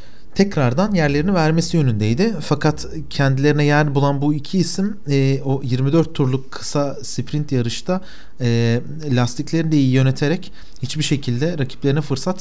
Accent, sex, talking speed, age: native, male, 130 wpm, 40-59